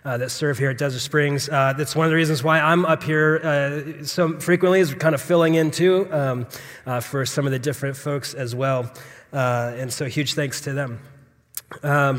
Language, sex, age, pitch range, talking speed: English, male, 30-49, 140-165 Hz, 215 wpm